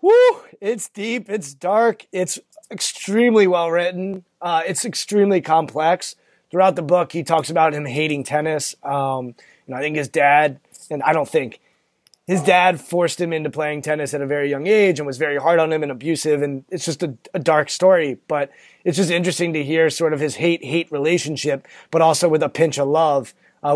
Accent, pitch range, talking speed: American, 145-175 Hz, 200 wpm